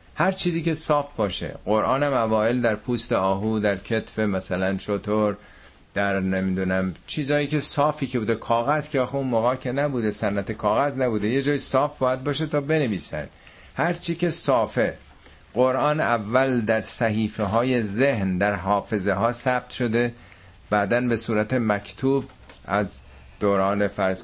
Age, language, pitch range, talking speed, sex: 50-69, Persian, 90-120 Hz, 145 wpm, male